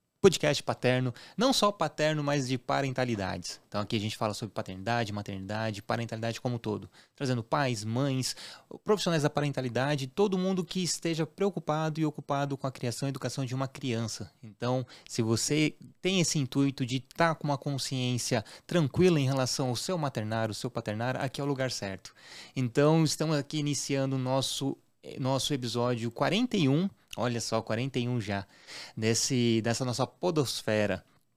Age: 20-39